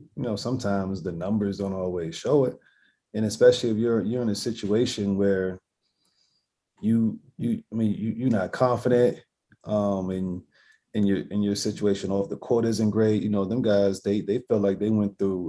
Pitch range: 100-120 Hz